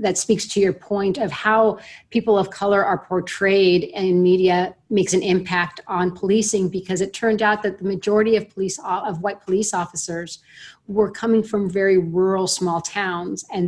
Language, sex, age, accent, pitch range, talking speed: English, female, 30-49, American, 180-205 Hz, 175 wpm